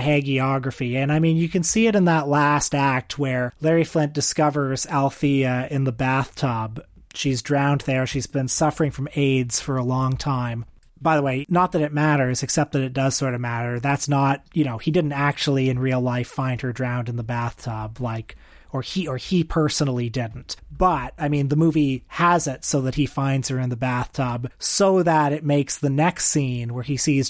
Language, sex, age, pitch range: English, male, 30-49, 130-150 Hz